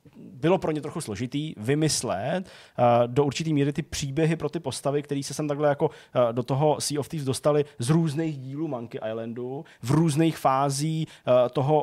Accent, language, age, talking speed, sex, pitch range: native, Czech, 20-39, 175 wpm, male, 120-150 Hz